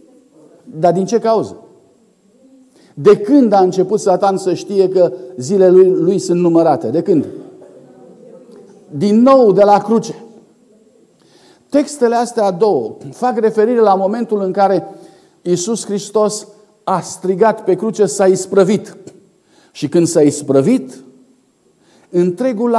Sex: male